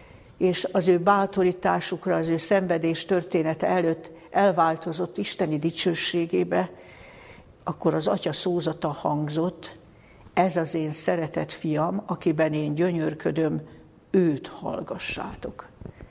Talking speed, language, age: 100 wpm, Hungarian, 60-79